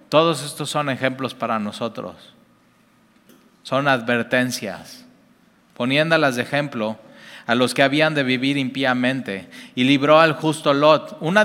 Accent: Mexican